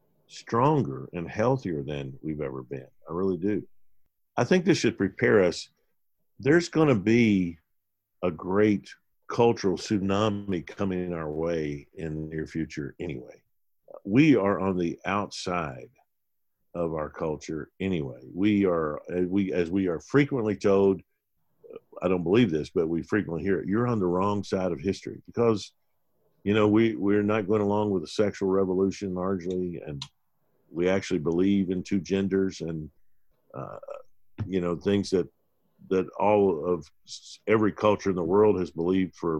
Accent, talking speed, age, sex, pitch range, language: American, 155 wpm, 50-69, male, 85-105 Hz, English